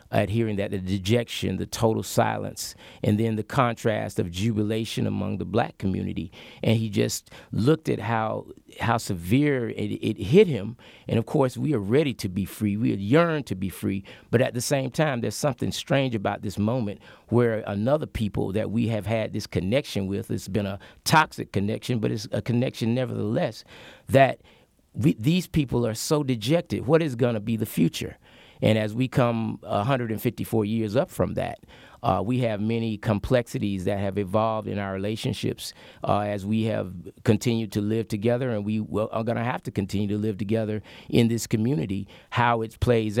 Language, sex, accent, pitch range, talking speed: English, male, American, 100-120 Hz, 185 wpm